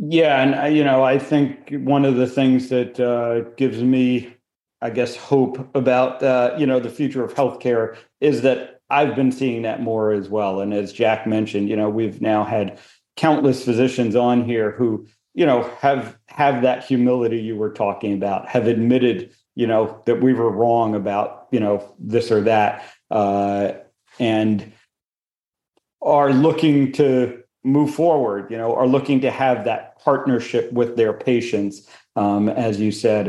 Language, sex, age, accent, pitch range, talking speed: English, male, 40-59, American, 115-130 Hz, 170 wpm